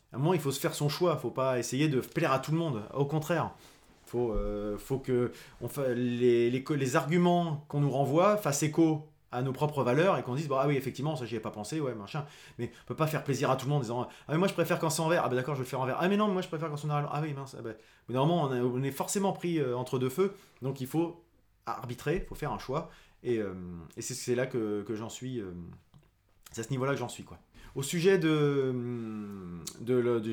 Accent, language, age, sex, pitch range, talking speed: French, French, 20-39, male, 120-155 Hz, 295 wpm